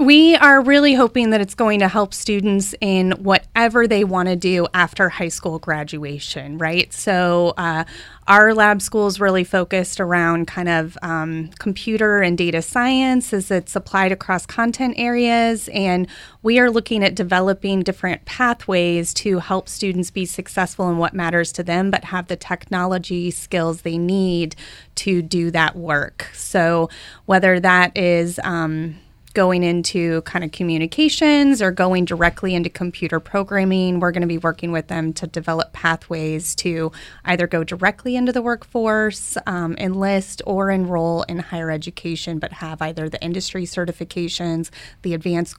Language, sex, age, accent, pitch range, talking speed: English, female, 30-49, American, 170-195 Hz, 160 wpm